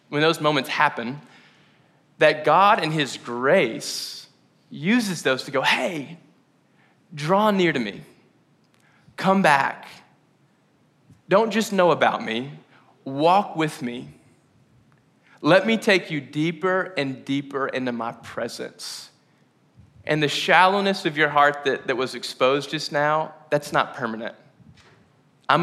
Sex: male